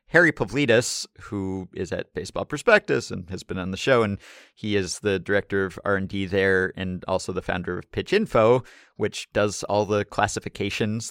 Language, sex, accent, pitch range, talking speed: English, male, American, 95-130 Hz, 180 wpm